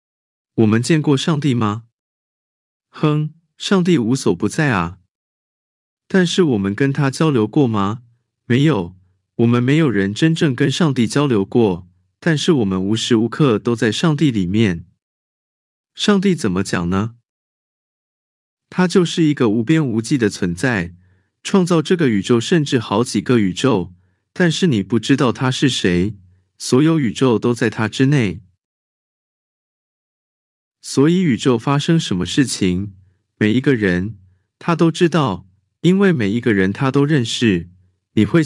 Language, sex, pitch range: Chinese, male, 95-155 Hz